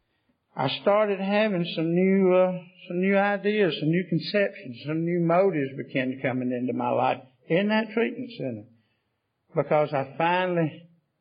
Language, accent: English, American